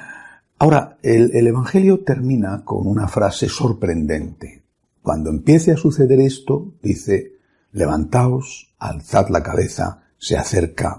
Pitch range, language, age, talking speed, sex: 95-135 Hz, Spanish, 60-79, 115 wpm, male